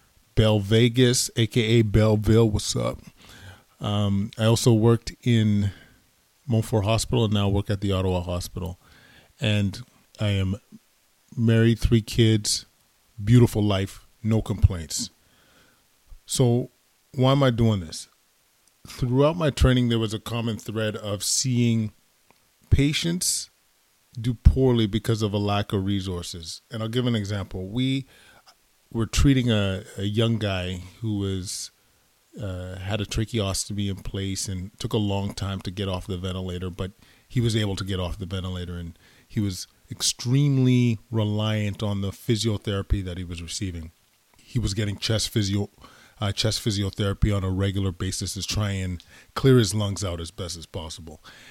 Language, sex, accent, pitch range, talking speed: English, male, American, 95-115 Hz, 150 wpm